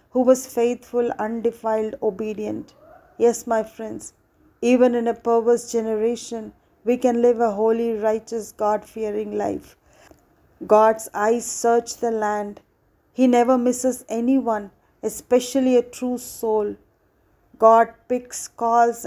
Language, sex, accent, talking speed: English, female, Indian, 115 wpm